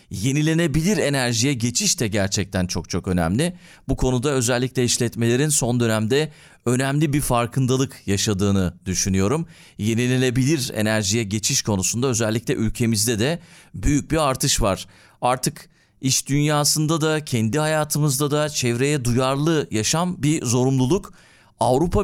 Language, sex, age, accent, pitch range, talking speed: Turkish, male, 40-59, native, 110-155 Hz, 115 wpm